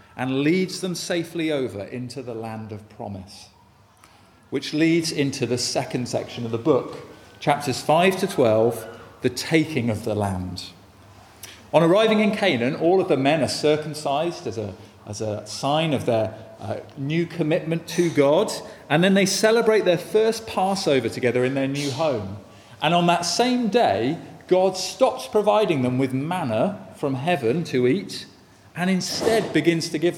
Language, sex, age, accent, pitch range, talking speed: English, male, 40-59, British, 115-165 Hz, 160 wpm